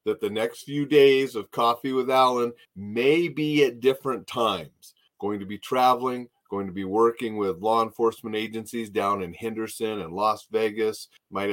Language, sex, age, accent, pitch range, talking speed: English, male, 30-49, American, 95-120 Hz, 170 wpm